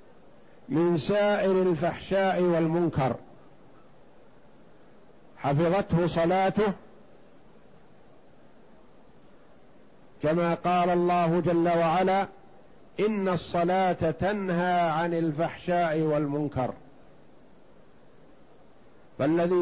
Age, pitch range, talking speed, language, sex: 50-69, 165-185 Hz, 55 wpm, Arabic, male